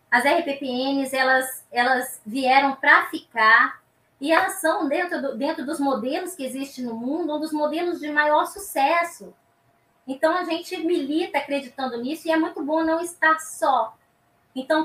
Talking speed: 160 wpm